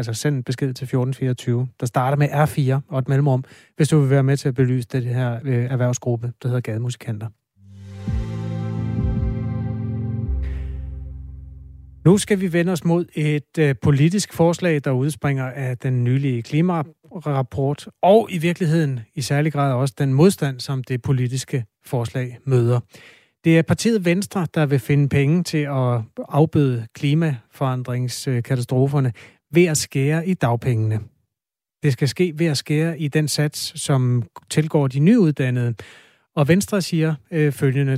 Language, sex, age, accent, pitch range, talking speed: Danish, male, 30-49, native, 125-155 Hz, 140 wpm